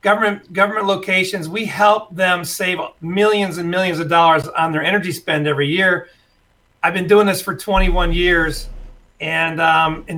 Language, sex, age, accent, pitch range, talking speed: English, male, 40-59, American, 155-190 Hz, 165 wpm